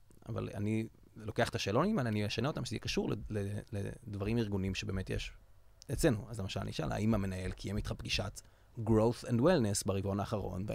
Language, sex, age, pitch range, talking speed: English, male, 30-49, 100-120 Hz, 165 wpm